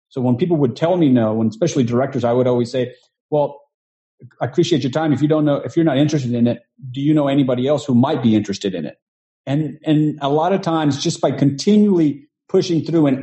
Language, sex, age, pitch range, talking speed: English, male, 40-59, 125-170 Hz, 235 wpm